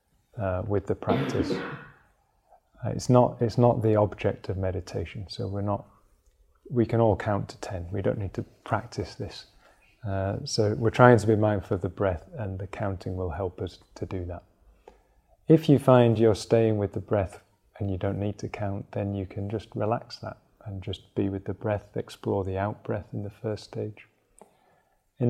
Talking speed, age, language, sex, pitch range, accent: 195 wpm, 30-49, English, male, 95-115 Hz, British